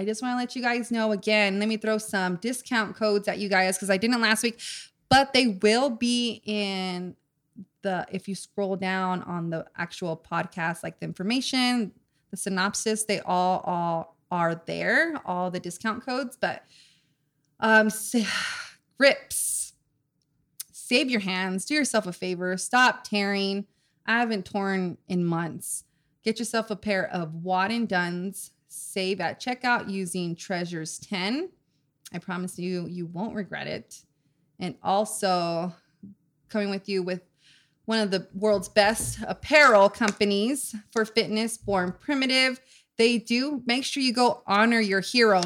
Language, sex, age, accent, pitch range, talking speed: English, female, 20-39, American, 180-230 Hz, 150 wpm